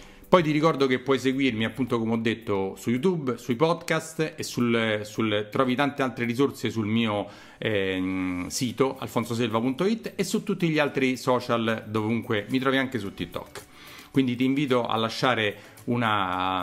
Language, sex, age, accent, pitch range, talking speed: Italian, male, 40-59, native, 110-145 Hz, 150 wpm